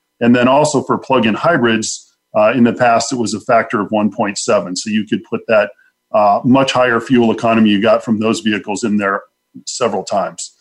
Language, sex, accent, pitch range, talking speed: English, male, American, 105-120 Hz, 200 wpm